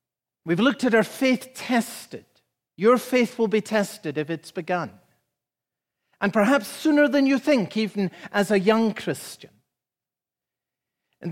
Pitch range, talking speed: 140-180 Hz, 140 wpm